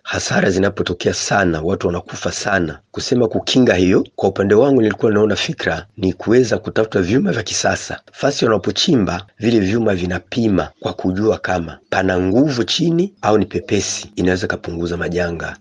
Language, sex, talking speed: Swahili, male, 145 wpm